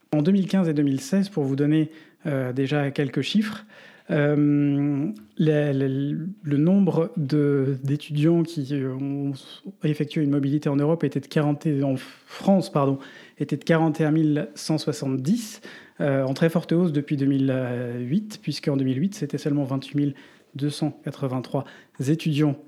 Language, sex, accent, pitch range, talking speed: French, male, French, 140-165 Hz, 130 wpm